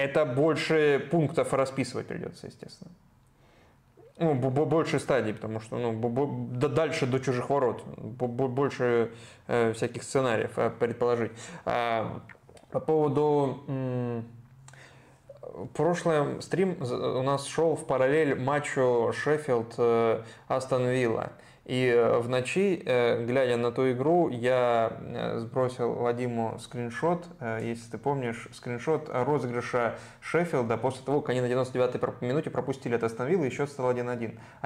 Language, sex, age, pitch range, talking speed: Russian, male, 20-39, 120-145 Hz, 105 wpm